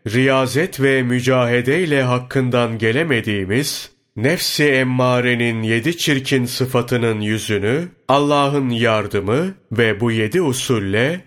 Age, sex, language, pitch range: 30-49, male, Turkish, 115-135 Hz